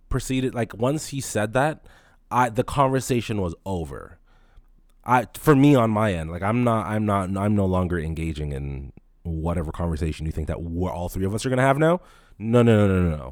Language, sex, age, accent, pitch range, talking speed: English, male, 20-39, American, 80-110 Hz, 210 wpm